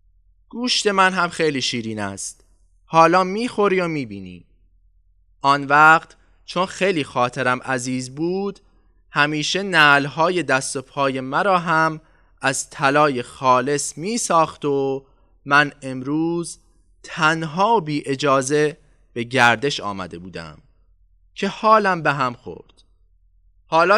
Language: Persian